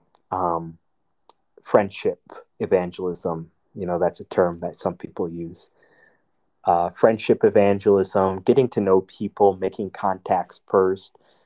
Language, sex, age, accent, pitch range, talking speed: English, male, 20-39, American, 85-100 Hz, 115 wpm